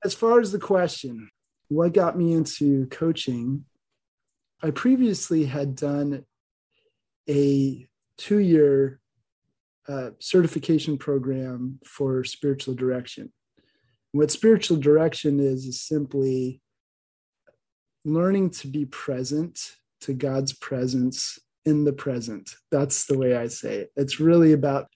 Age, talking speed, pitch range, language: 20-39, 110 wpm, 135-160 Hz, English